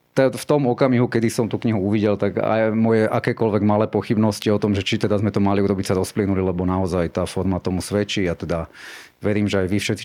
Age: 30-49